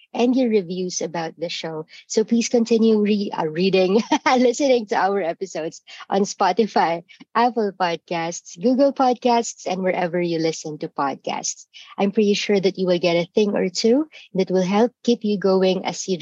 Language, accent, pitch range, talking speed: English, Filipino, 185-245 Hz, 180 wpm